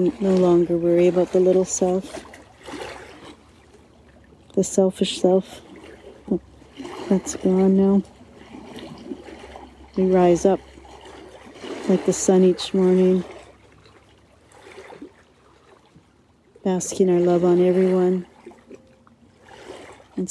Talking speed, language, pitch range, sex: 80 wpm, English, 180-195 Hz, female